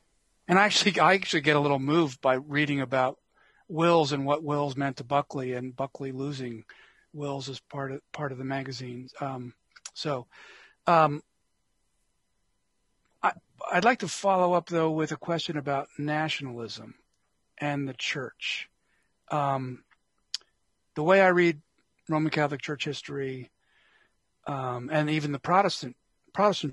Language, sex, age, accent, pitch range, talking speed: English, male, 40-59, American, 140-170 Hz, 140 wpm